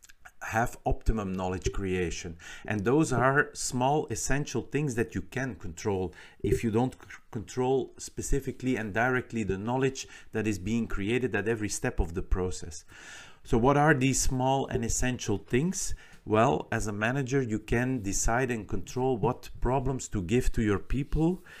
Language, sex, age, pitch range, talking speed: English, male, 40-59, 105-130 Hz, 160 wpm